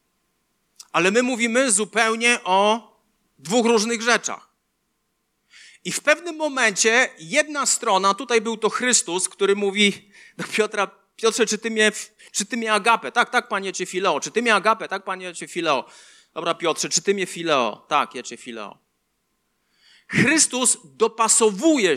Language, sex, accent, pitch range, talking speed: Polish, male, native, 180-235 Hz, 150 wpm